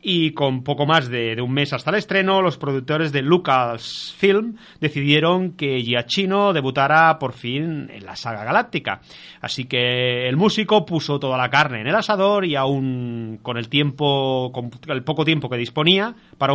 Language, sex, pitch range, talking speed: Spanish, male, 125-160 Hz, 175 wpm